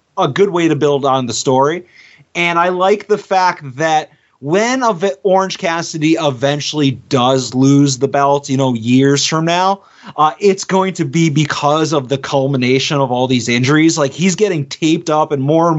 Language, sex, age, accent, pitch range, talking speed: English, male, 30-49, American, 140-170 Hz, 180 wpm